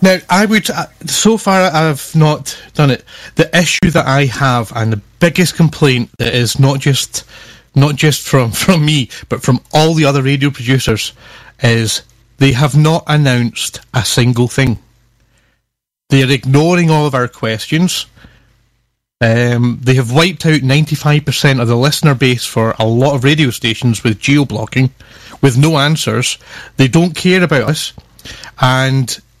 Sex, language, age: male, English, 30-49